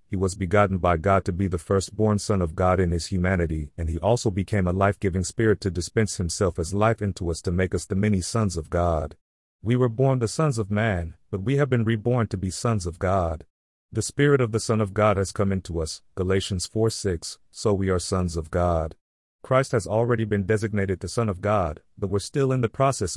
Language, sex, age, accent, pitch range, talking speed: English, male, 40-59, American, 90-110 Hz, 230 wpm